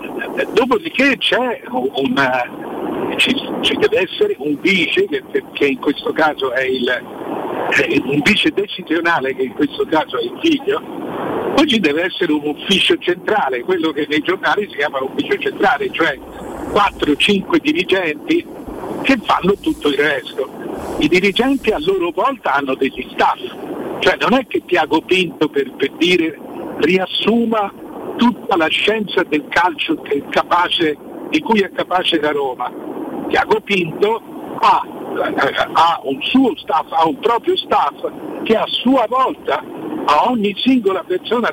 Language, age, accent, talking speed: Italian, 60-79, native, 145 wpm